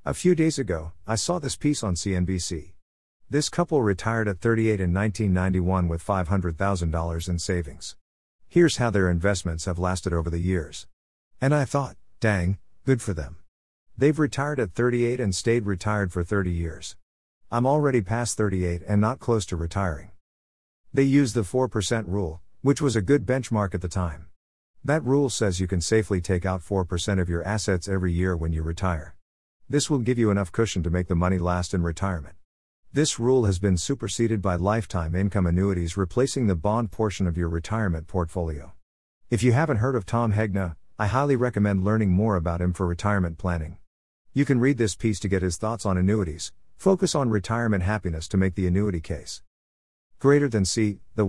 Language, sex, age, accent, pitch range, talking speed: English, male, 50-69, American, 85-115 Hz, 185 wpm